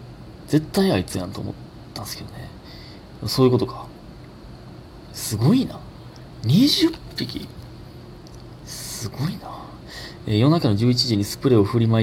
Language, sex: Japanese, male